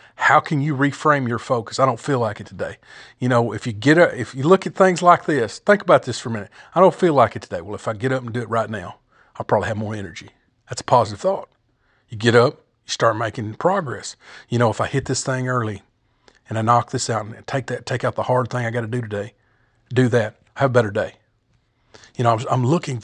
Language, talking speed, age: English, 260 wpm, 40-59